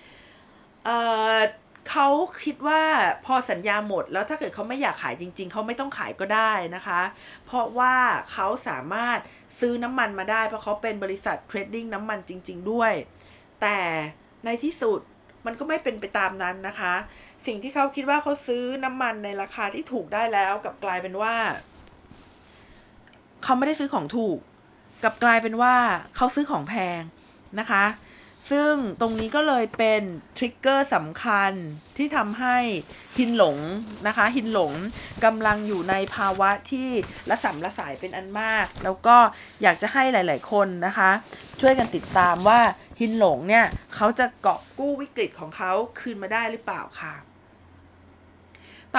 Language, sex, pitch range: Thai, female, 195-250 Hz